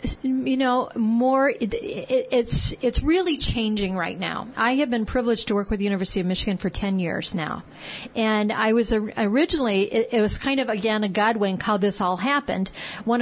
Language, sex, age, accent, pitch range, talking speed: English, female, 40-59, American, 195-240 Hz, 185 wpm